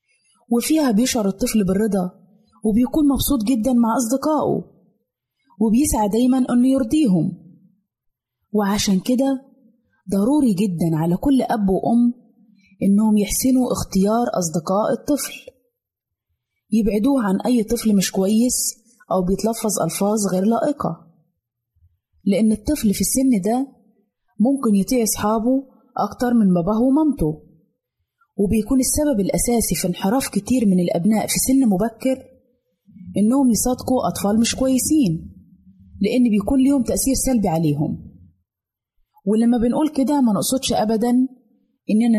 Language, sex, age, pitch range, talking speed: Arabic, female, 20-39, 195-255 Hz, 110 wpm